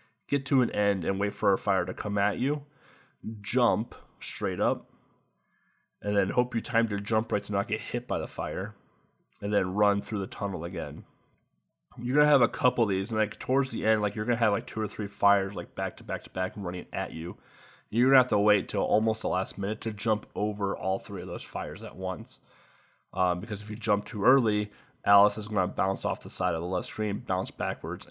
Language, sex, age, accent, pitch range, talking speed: English, male, 20-39, American, 95-115 Hz, 240 wpm